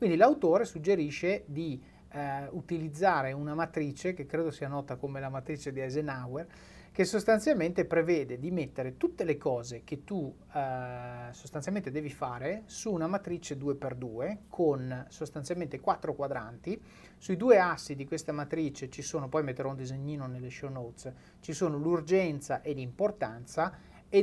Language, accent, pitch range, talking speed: Italian, native, 140-180 Hz, 150 wpm